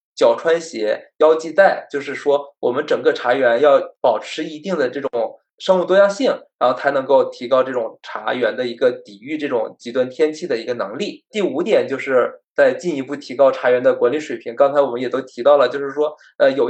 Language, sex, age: Chinese, male, 20-39